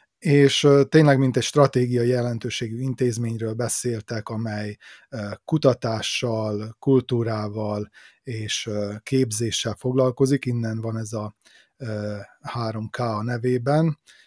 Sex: male